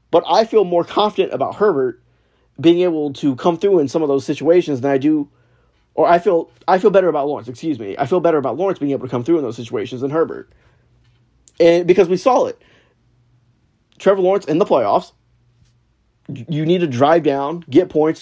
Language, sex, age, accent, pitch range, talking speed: English, male, 30-49, American, 125-180 Hz, 205 wpm